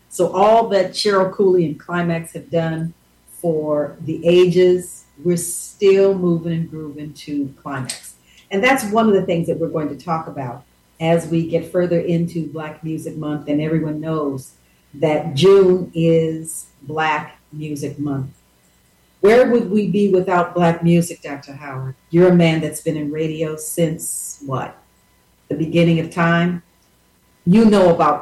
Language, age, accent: English, 50-69, American